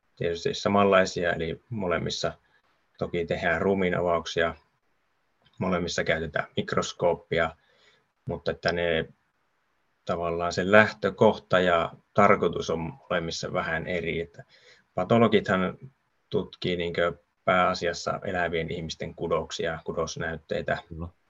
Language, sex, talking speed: Finnish, male, 85 wpm